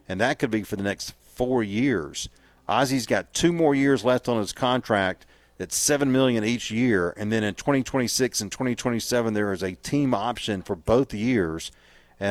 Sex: male